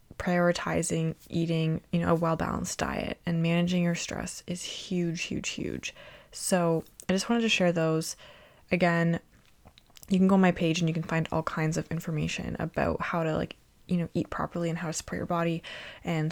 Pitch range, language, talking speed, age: 160-175 Hz, English, 190 wpm, 20-39